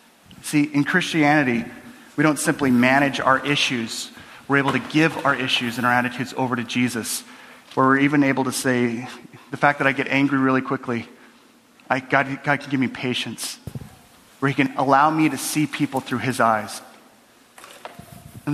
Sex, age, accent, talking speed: male, 30-49, American, 170 wpm